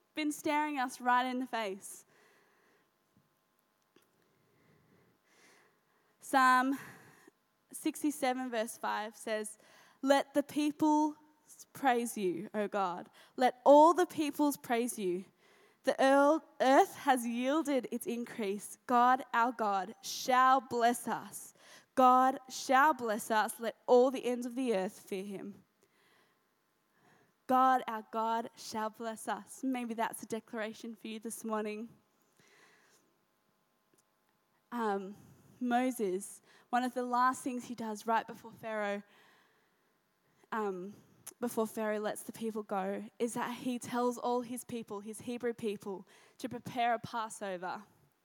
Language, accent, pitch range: English, Australian, 215-260 Hz